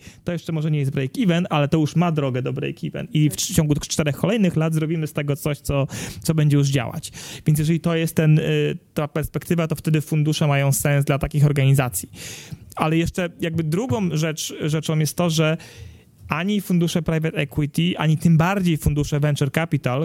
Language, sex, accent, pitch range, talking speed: Polish, male, native, 145-165 Hz, 190 wpm